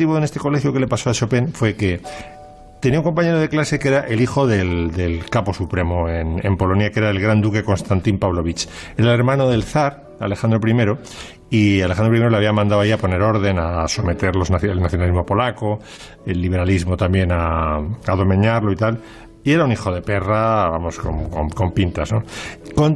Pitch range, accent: 95-125 Hz, Spanish